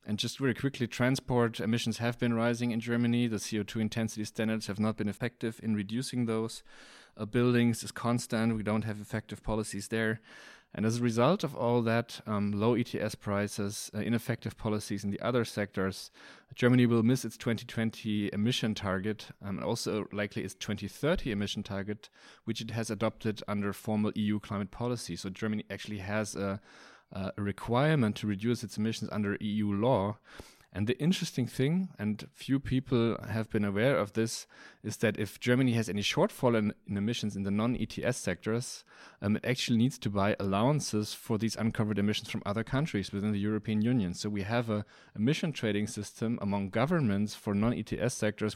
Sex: male